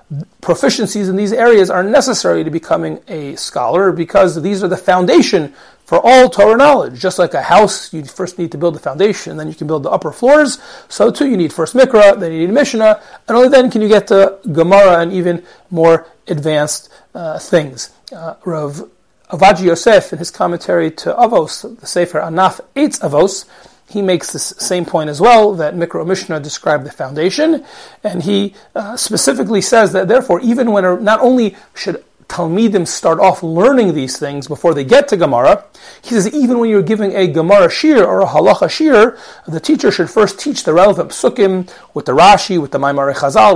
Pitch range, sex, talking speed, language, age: 165-215 Hz, male, 195 wpm, English, 40-59